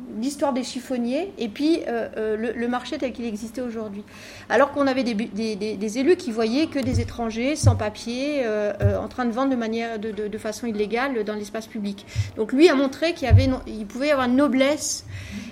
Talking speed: 220 wpm